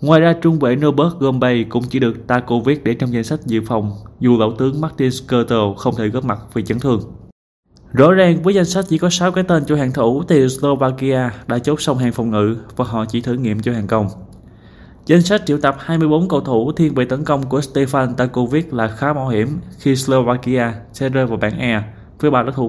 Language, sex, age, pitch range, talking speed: Vietnamese, male, 20-39, 110-145 Hz, 225 wpm